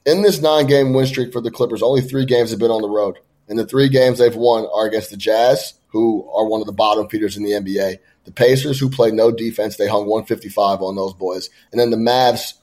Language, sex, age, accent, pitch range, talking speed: English, male, 20-39, American, 110-130 Hz, 245 wpm